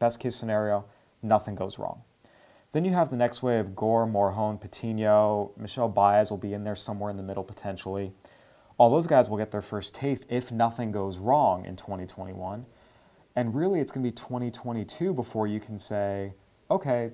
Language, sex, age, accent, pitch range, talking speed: English, male, 30-49, American, 105-130 Hz, 185 wpm